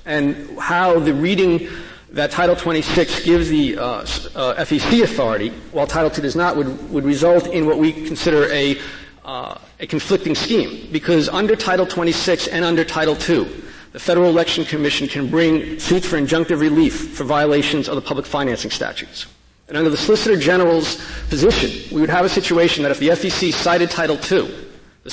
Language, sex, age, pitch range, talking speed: English, male, 50-69, 150-175 Hz, 175 wpm